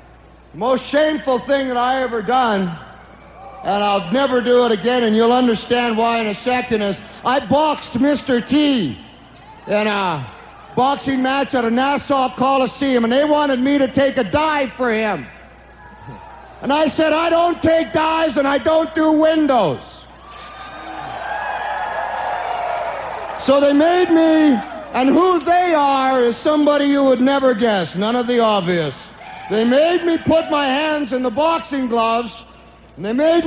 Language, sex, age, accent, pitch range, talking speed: English, male, 50-69, American, 245-320 Hz, 155 wpm